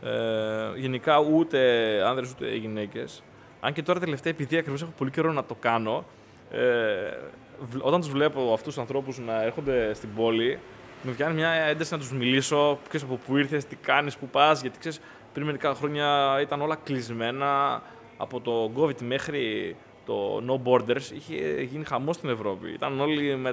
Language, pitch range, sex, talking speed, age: Greek, 125-160 Hz, male, 170 wpm, 20-39